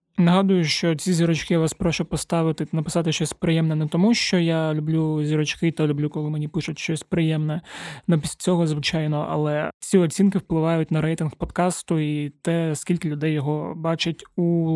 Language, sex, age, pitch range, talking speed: Ukrainian, male, 20-39, 155-175 Hz, 170 wpm